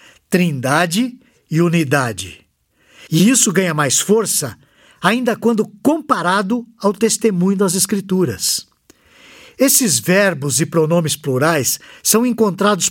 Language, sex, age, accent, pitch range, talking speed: Portuguese, male, 60-79, Brazilian, 145-200 Hz, 100 wpm